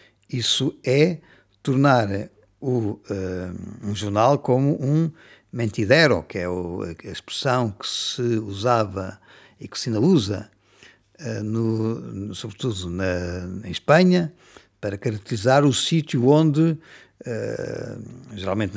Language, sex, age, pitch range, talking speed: Portuguese, male, 50-69, 100-130 Hz, 110 wpm